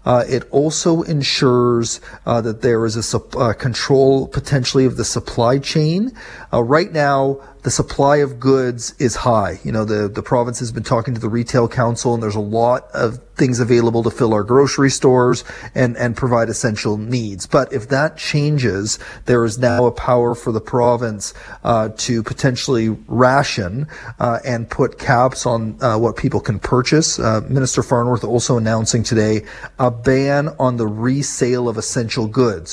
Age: 40-59